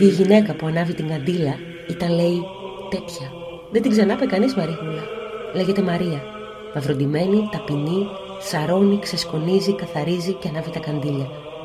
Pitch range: 160-200 Hz